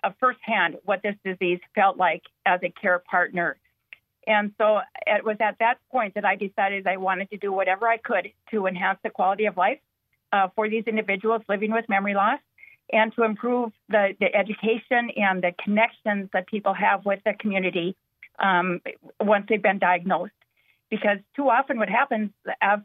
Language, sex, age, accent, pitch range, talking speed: English, female, 50-69, American, 195-230 Hz, 175 wpm